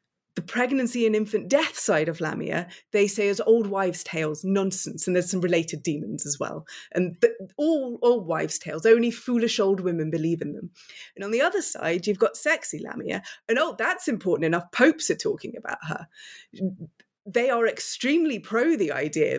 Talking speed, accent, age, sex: 185 wpm, British, 30-49, female